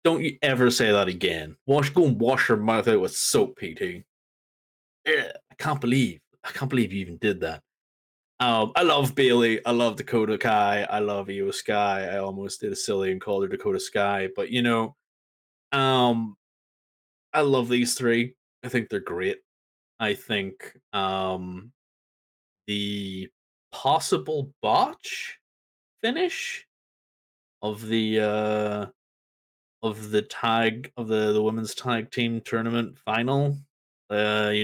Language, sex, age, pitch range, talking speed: English, male, 20-39, 100-140 Hz, 145 wpm